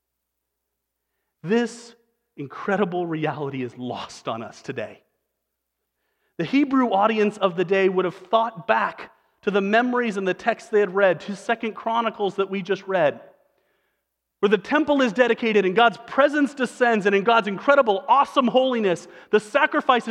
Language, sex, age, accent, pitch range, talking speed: English, male, 30-49, American, 195-255 Hz, 150 wpm